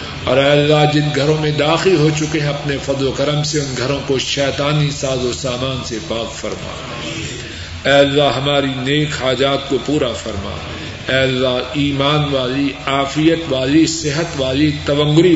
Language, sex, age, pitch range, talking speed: Urdu, male, 50-69, 135-155 Hz, 165 wpm